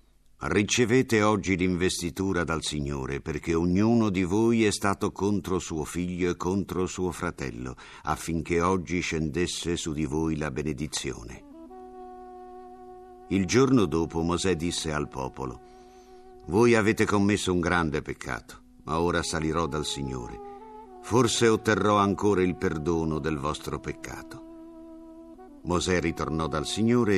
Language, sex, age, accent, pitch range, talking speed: Italian, male, 50-69, native, 80-110 Hz, 125 wpm